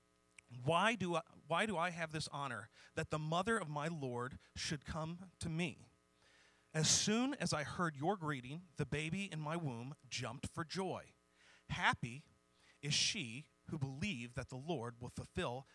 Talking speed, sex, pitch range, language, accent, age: 160 wpm, male, 130-170 Hz, English, American, 40-59